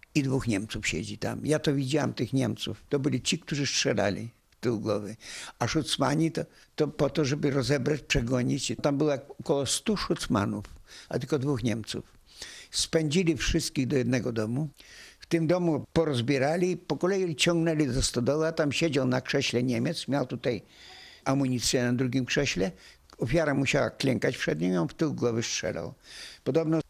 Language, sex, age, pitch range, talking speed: Polish, male, 60-79, 125-160 Hz, 165 wpm